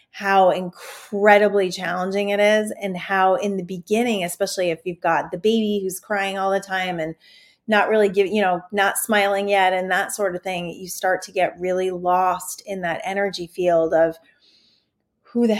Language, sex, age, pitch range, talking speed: English, female, 30-49, 180-205 Hz, 185 wpm